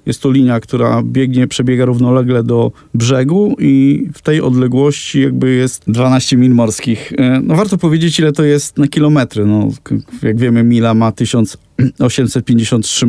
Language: Polish